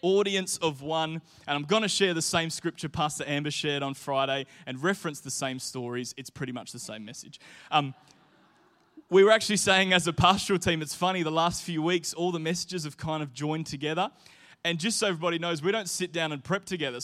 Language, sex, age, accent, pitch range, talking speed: English, male, 20-39, Australian, 145-180 Hz, 220 wpm